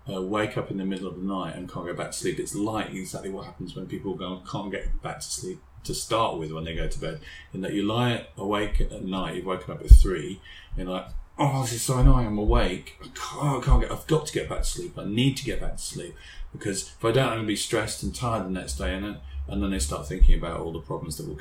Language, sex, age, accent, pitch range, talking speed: English, male, 30-49, British, 85-110 Hz, 285 wpm